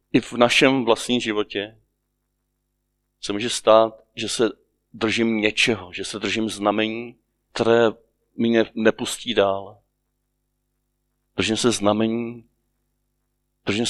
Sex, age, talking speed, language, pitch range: male, 40-59, 105 wpm, Czech, 95-125 Hz